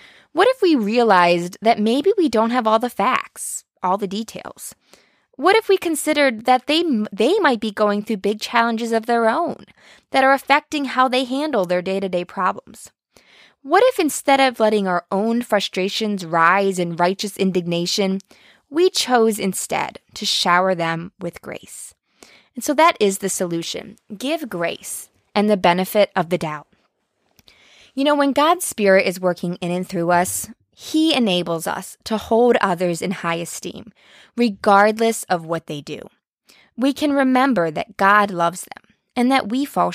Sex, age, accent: female, 20-39, American